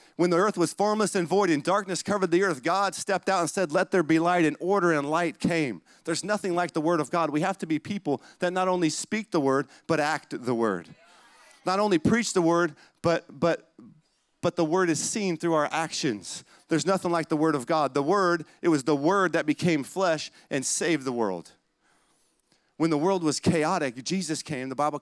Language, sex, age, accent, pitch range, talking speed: English, male, 40-59, American, 130-170 Hz, 220 wpm